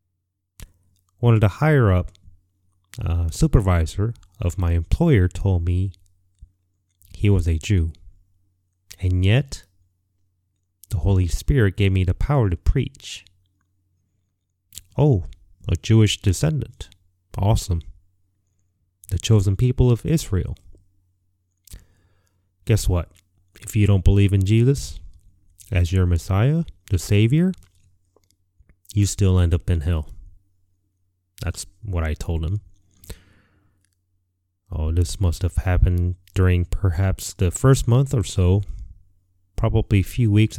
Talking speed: 110 wpm